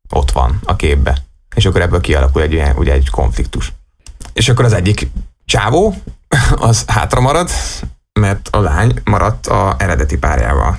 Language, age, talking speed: Hungarian, 20-39, 150 wpm